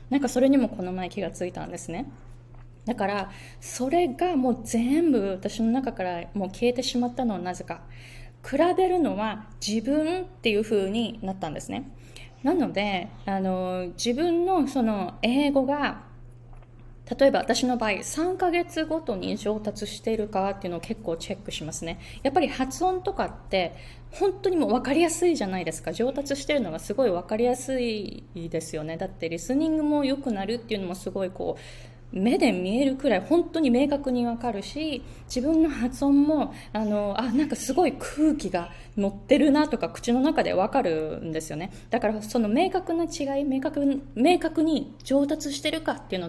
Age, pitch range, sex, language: 20-39, 180-280 Hz, female, Japanese